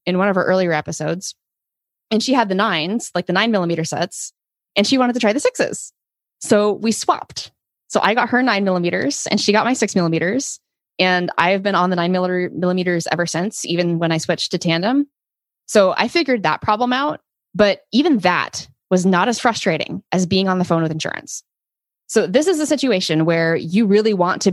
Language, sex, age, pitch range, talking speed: English, female, 20-39, 170-210 Hz, 205 wpm